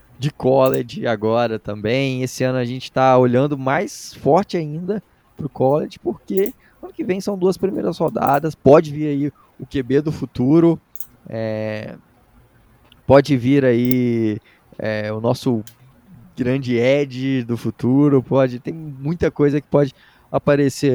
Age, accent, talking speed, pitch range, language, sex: 20-39, Brazilian, 140 wpm, 120-145 Hz, Portuguese, male